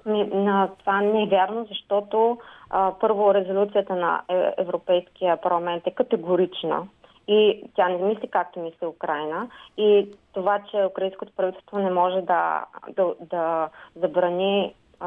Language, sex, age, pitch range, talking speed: Bulgarian, female, 20-39, 170-195 Hz, 120 wpm